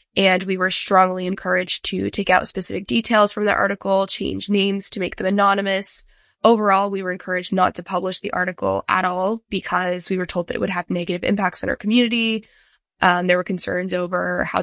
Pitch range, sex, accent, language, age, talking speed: 180-200 Hz, female, American, English, 10-29, 200 wpm